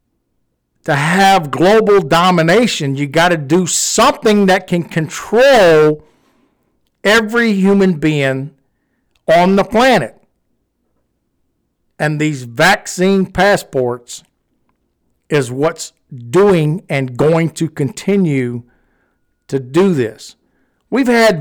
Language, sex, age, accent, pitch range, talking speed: English, male, 50-69, American, 140-195 Hz, 95 wpm